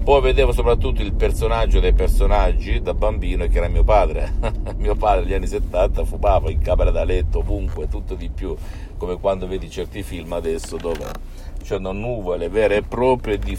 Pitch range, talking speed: 75-95 Hz, 175 wpm